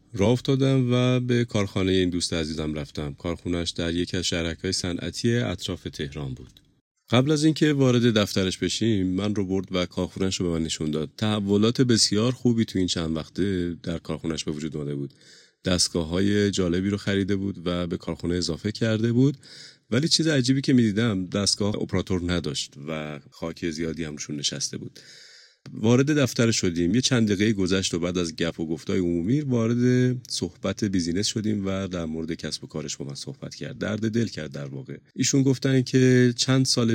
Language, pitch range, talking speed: Persian, 85-115 Hz, 180 wpm